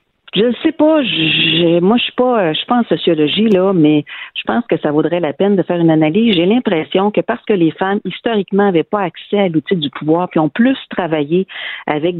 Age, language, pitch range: 50-69, French, 155-200 Hz